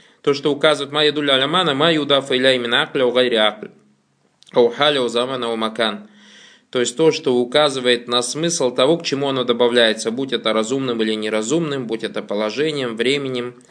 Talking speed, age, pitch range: 115 wpm, 20-39, 120-145 Hz